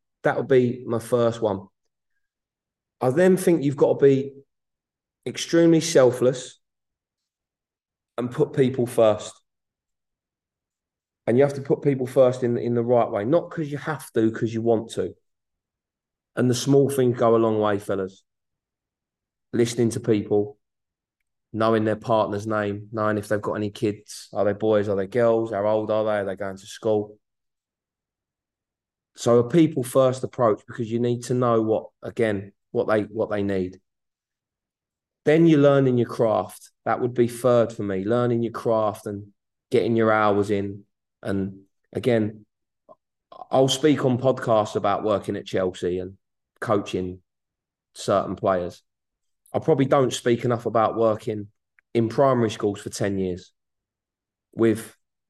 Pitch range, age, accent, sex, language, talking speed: 105-125 Hz, 20-39, British, male, English, 155 wpm